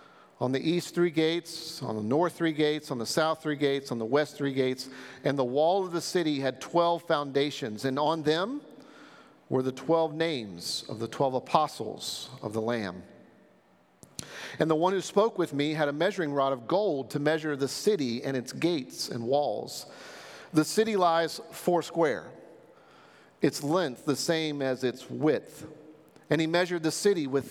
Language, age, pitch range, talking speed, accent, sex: English, 50-69, 135-165 Hz, 180 wpm, American, male